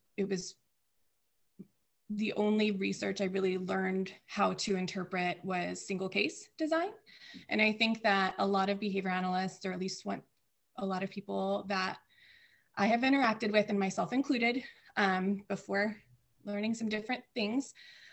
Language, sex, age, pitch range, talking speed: English, female, 20-39, 190-225 Hz, 150 wpm